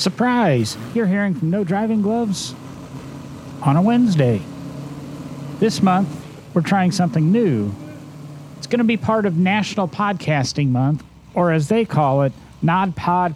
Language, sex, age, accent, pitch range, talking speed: English, male, 40-59, American, 140-205 Hz, 145 wpm